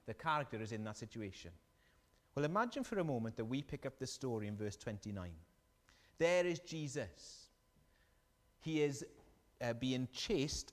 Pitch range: 115-160 Hz